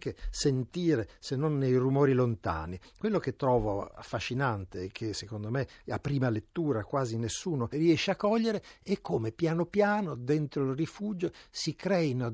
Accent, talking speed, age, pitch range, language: native, 155 wpm, 60-79, 115-150 Hz, Italian